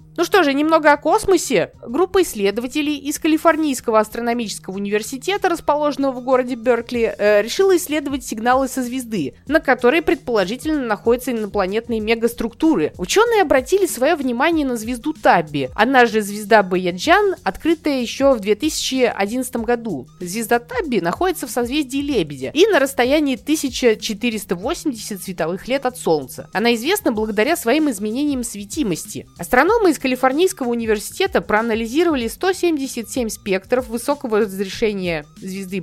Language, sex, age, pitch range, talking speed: Russian, female, 20-39, 205-295 Hz, 125 wpm